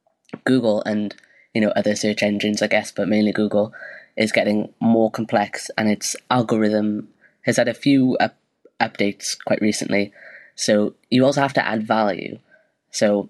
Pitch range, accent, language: 105-115 Hz, British, English